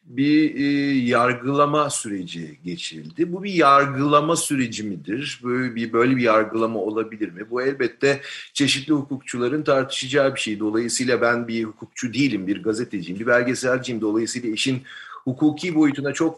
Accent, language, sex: native, Turkish, male